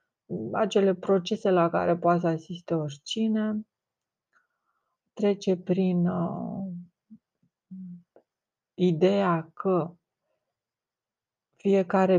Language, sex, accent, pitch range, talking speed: Romanian, female, native, 165-185 Hz, 70 wpm